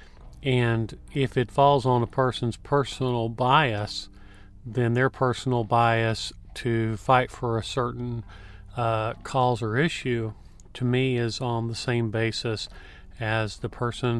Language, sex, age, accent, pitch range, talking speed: English, male, 40-59, American, 105-125 Hz, 135 wpm